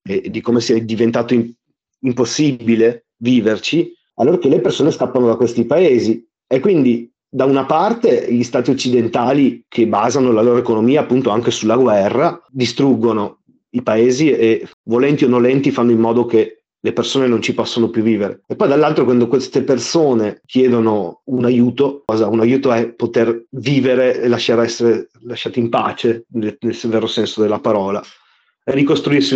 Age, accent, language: 30-49, native, Italian